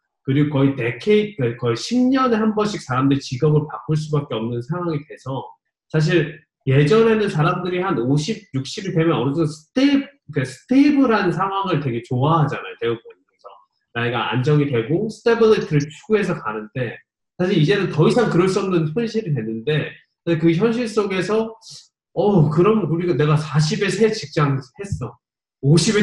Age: 20-39